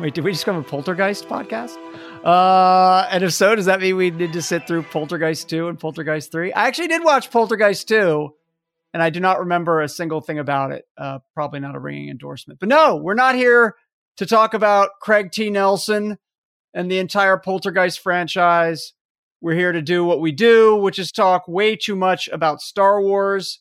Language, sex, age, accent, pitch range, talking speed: English, male, 40-59, American, 165-210 Hz, 200 wpm